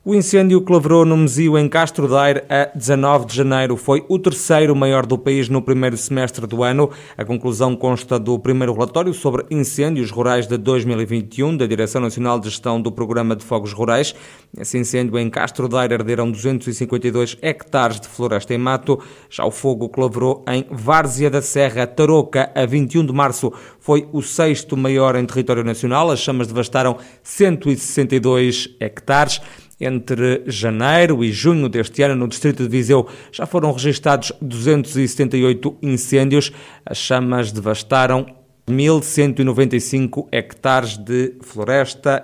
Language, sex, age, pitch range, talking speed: Portuguese, male, 20-39, 125-145 Hz, 150 wpm